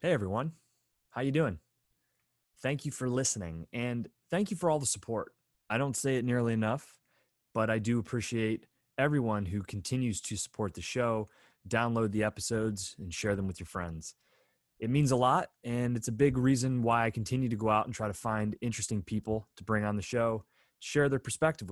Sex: male